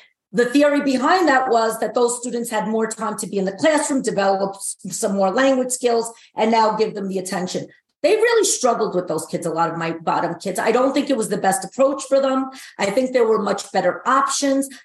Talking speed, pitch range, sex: 225 wpm, 225-275 Hz, female